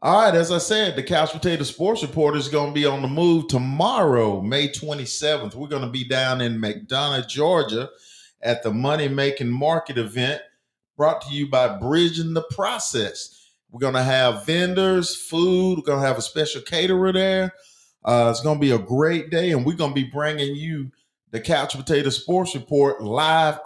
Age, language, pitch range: 40-59, English, 130-165 Hz